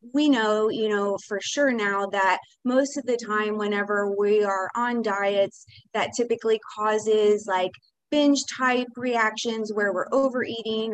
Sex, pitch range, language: female, 210-245 Hz, English